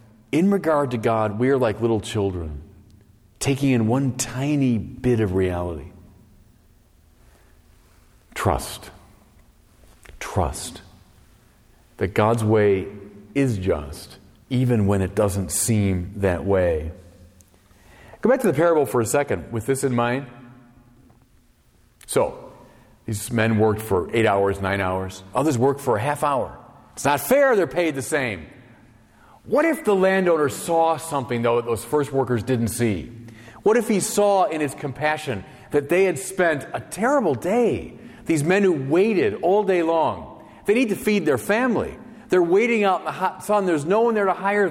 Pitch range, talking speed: 110-180 Hz, 155 wpm